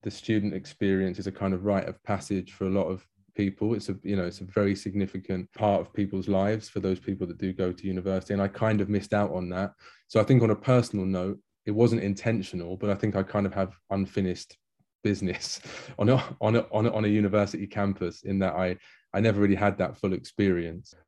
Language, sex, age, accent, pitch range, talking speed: English, male, 20-39, British, 95-105 Hz, 225 wpm